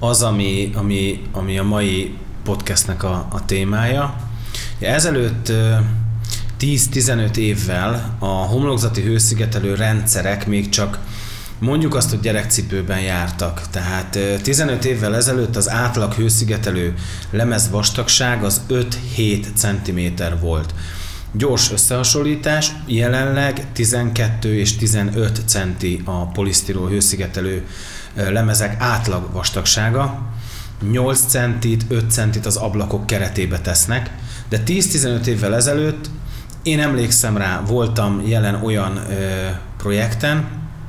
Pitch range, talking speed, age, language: 100-120 Hz, 105 wpm, 30-49, Hungarian